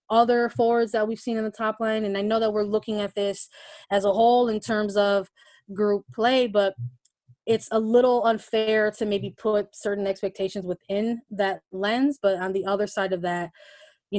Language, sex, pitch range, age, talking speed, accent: English, female, 190-225 Hz, 20-39, 195 wpm, American